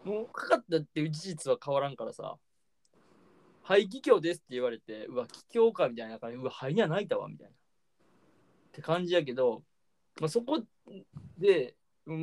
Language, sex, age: Japanese, male, 20-39